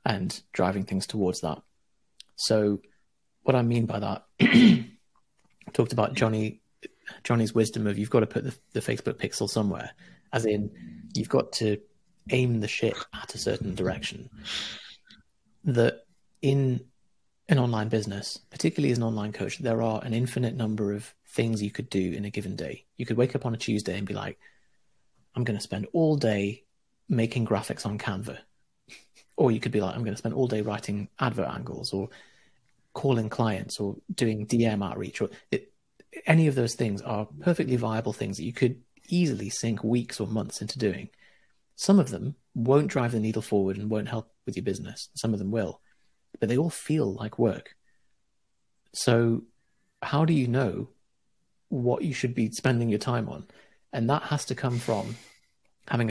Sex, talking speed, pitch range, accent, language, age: male, 180 wpm, 105-125 Hz, British, English, 30-49